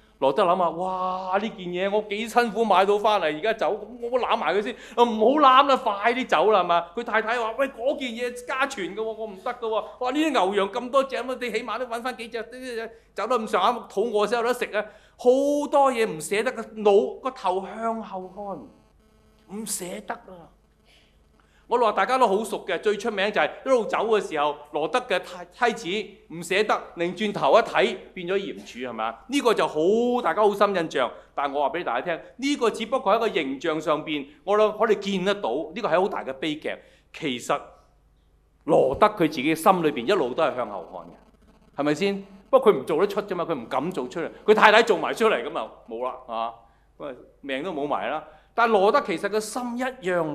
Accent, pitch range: native, 180-235 Hz